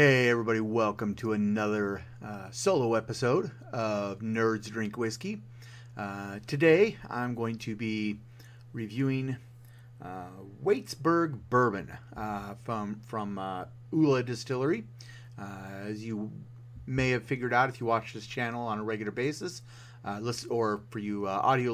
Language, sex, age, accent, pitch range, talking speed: English, male, 40-59, American, 110-125 Hz, 140 wpm